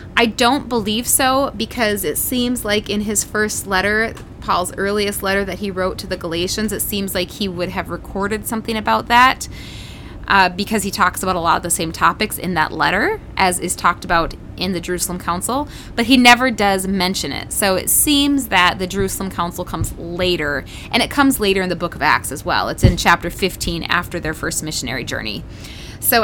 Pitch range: 170-220 Hz